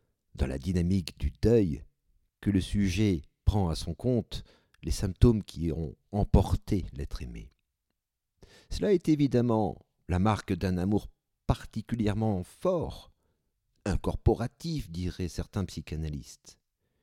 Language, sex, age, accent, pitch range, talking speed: French, male, 50-69, French, 75-110 Hz, 115 wpm